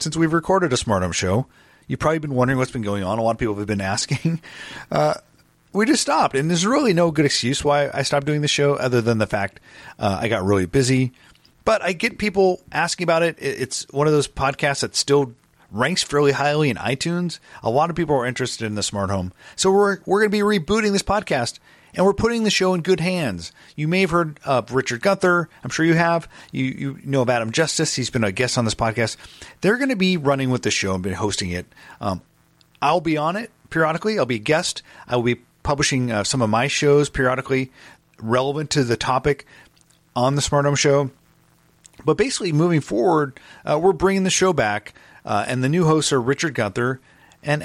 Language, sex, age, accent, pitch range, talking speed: English, male, 40-59, American, 115-165 Hz, 220 wpm